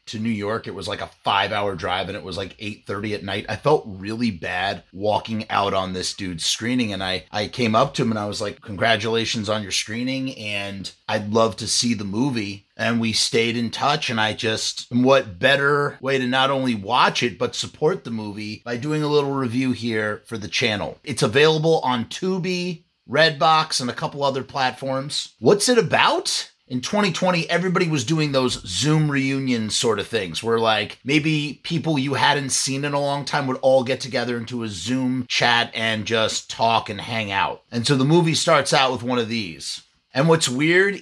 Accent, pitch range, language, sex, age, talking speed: American, 110-145 Hz, English, male, 30-49, 205 wpm